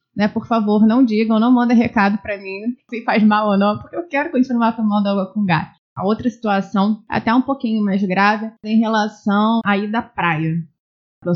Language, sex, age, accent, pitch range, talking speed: Portuguese, female, 20-39, Brazilian, 195-245 Hz, 200 wpm